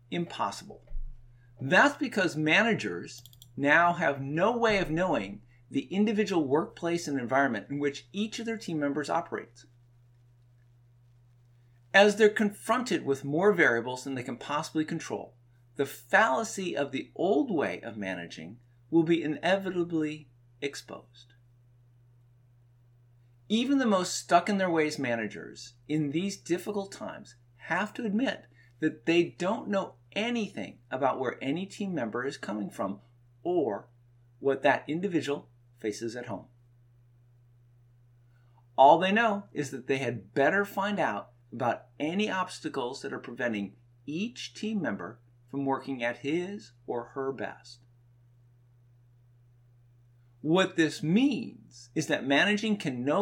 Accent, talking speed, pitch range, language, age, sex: American, 125 wpm, 120-170 Hz, English, 50-69, male